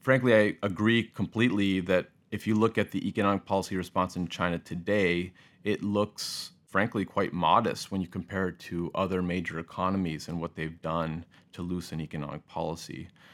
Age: 30-49